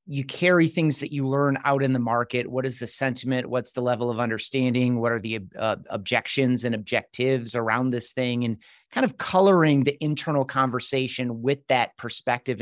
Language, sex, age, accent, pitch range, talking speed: English, male, 30-49, American, 125-165 Hz, 185 wpm